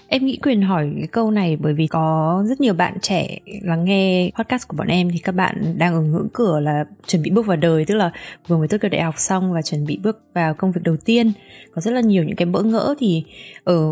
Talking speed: 265 wpm